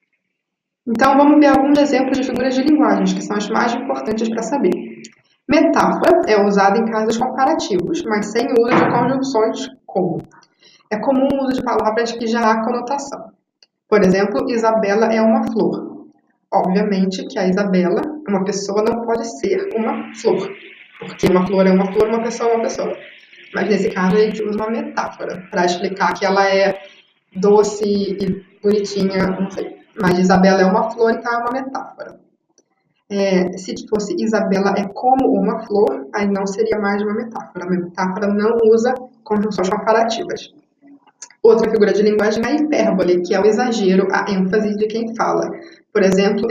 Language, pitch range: Portuguese, 195-235 Hz